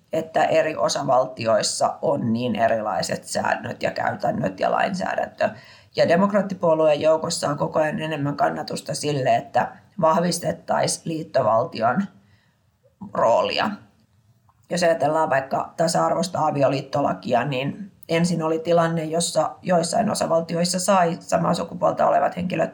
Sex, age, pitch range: female, 30-49, 145-170 Hz